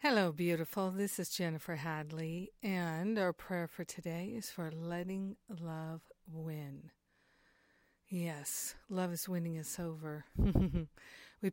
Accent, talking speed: American, 120 wpm